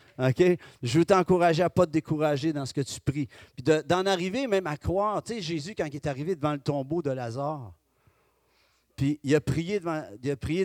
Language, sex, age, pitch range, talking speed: French, male, 40-59, 135-180 Hz, 230 wpm